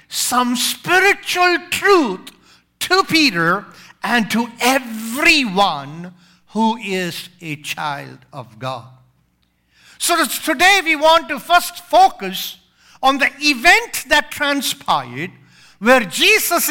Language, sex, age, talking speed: English, male, 50-69, 100 wpm